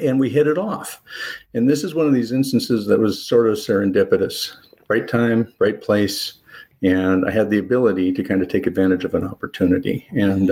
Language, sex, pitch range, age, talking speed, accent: English, male, 95-130 Hz, 50-69, 200 wpm, American